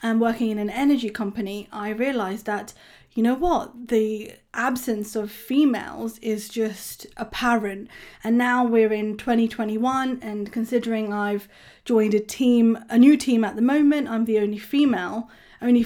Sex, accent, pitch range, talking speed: female, British, 215-245 Hz, 155 wpm